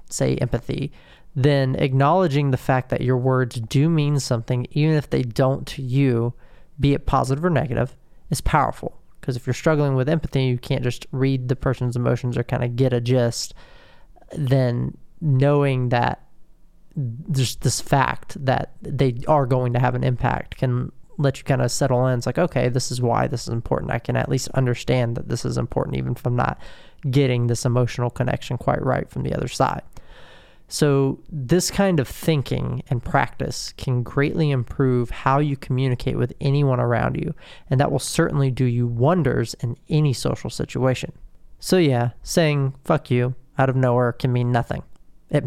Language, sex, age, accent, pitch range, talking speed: English, male, 20-39, American, 125-140 Hz, 180 wpm